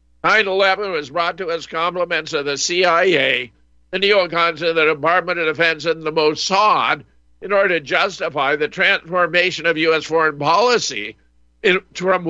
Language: English